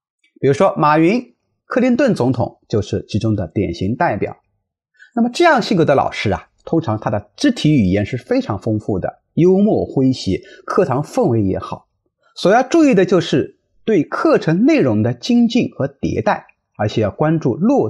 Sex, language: male, Chinese